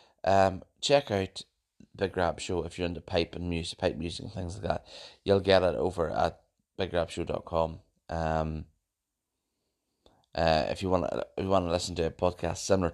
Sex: male